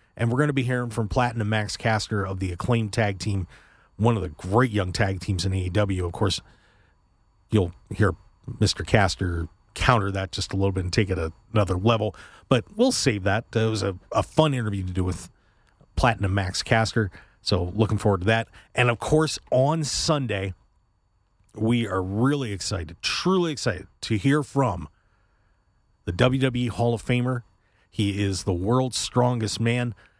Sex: male